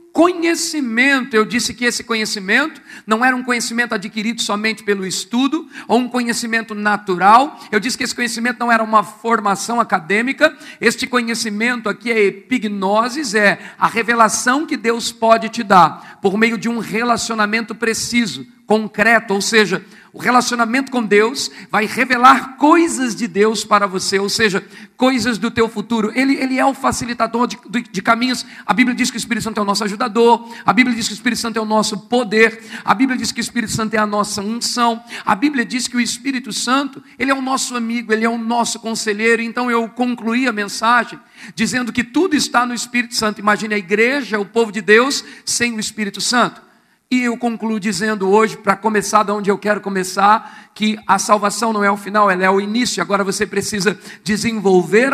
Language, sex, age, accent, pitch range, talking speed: Portuguese, male, 50-69, Brazilian, 210-245 Hz, 190 wpm